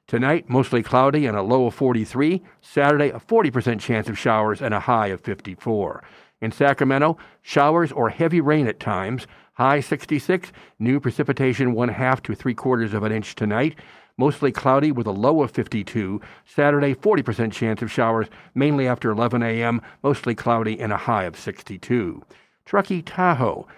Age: 50-69